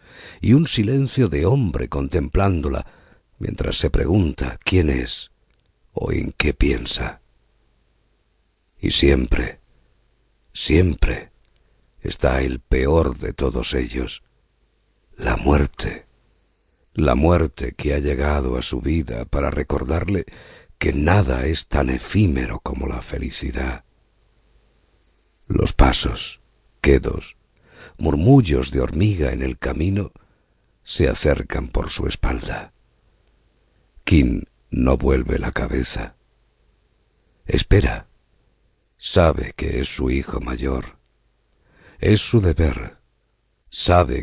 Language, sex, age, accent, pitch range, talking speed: Spanish, male, 50-69, Spanish, 65-85 Hz, 100 wpm